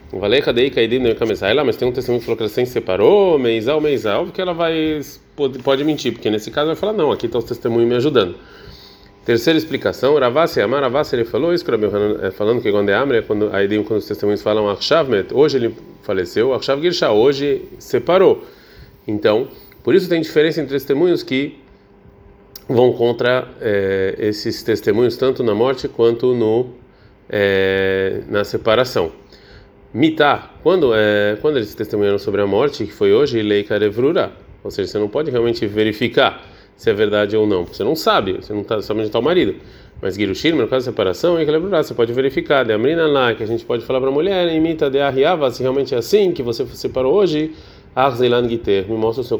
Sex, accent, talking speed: male, Brazilian, 175 wpm